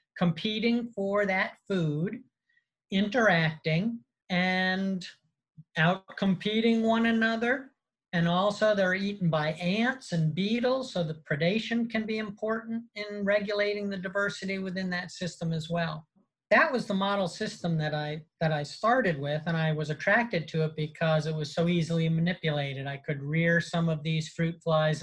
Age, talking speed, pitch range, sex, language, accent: 50-69, 150 wpm, 160-205 Hz, male, English, American